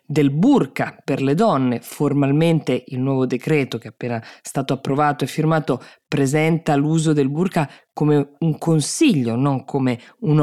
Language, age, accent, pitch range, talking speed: Italian, 20-39, native, 130-160 Hz, 150 wpm